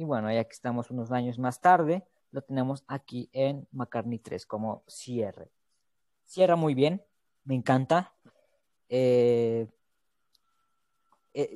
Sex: female